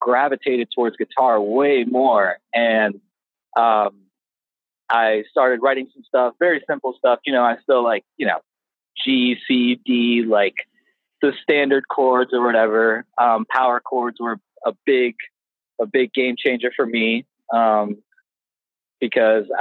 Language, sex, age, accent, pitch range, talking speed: English, male, 30-49, American, 110-140 Hz, 140 wpm